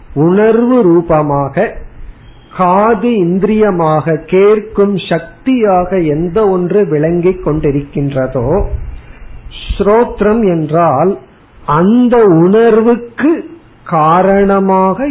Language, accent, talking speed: Tamil, native, 60 wpm